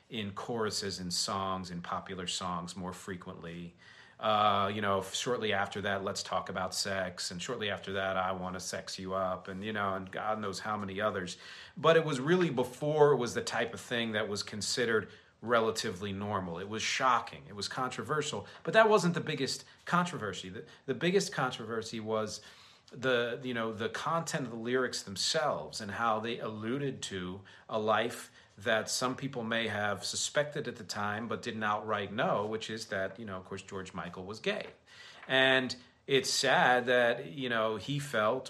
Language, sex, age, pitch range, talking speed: English, male, 40-59, 100-125 Hz, 185 wpm